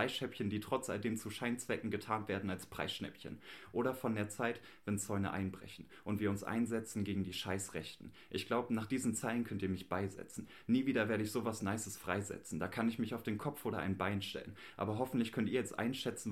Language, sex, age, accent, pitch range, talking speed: German, male, 30-49, German, 95-115 Hz, 205 wpm